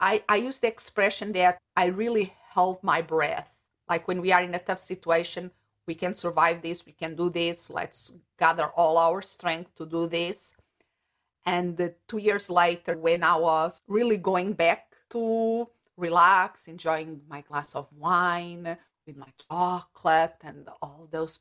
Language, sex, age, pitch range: English, female, 50-69, 165-205 Hz